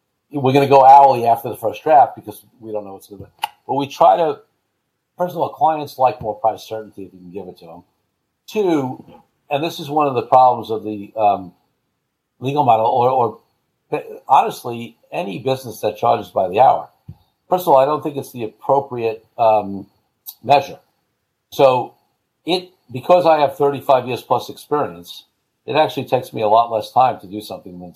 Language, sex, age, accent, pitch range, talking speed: English, male, 50-69, American, 110-140 Hz, 195 wpm